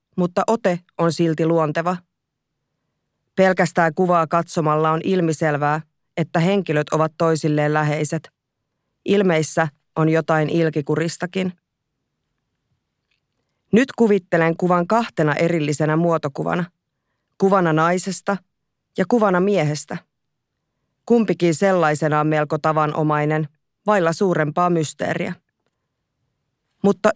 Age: 20-39